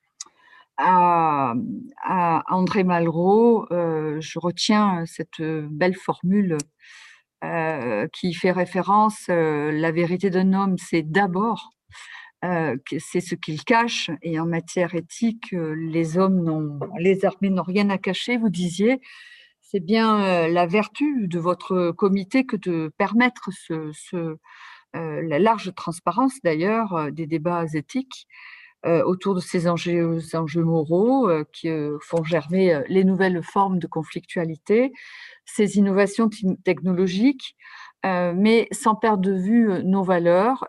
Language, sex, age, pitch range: French, female, 50-69, 165-205 Hz